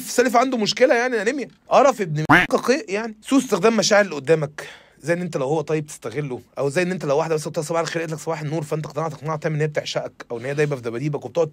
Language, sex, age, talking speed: Arabic, male, 30-49, 245 wpm